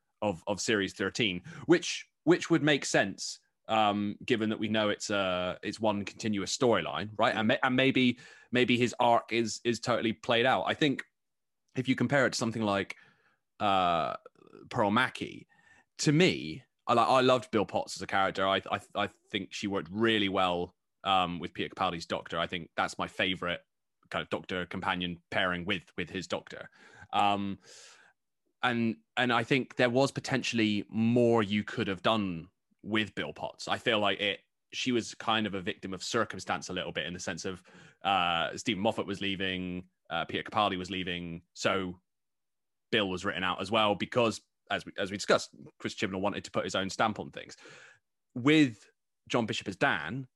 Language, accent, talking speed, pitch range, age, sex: English, British, 185 wpm, 95-120 Hz, 20-39, male